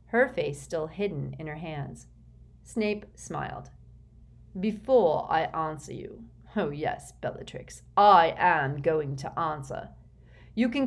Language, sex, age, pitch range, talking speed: English, female, 40-59, 150-235 Hz, 125 wpm